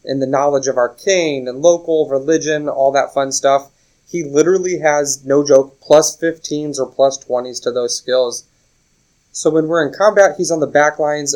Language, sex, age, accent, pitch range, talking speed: English, male, 20-39, American, 130-160 Hz, 185 wpm